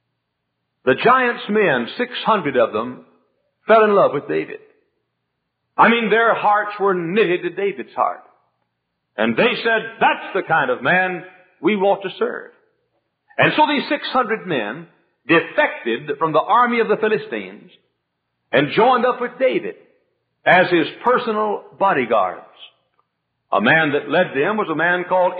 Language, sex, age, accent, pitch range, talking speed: English, male, 60-79, American, 185-300 Hz, 145 wpm